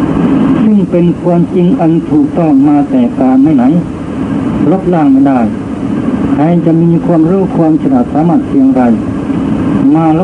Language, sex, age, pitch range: Thai, male, 60-79, 165-265 Hz